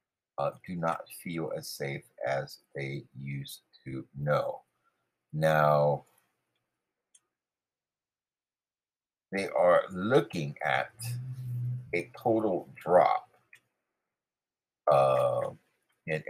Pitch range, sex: 70-100 Hz, male